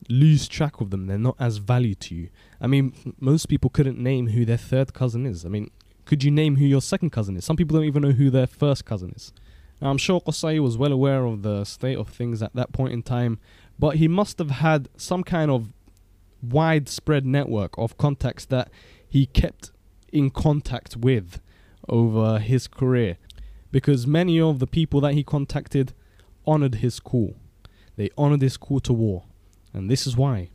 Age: 10-29